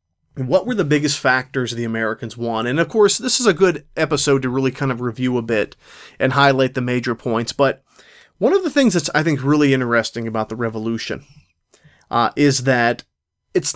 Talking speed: 195 wpm